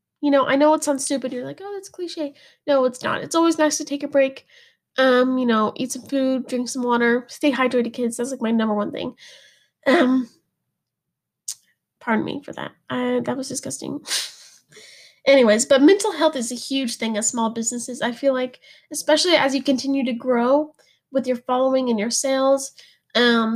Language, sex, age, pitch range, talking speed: English, female, 10-29, 245-290 Hz, 195 wpm